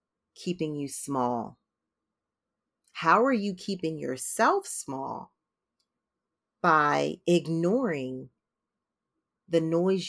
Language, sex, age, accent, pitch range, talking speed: English, female, 30-49, American, 160-230 Hz, 75 wpm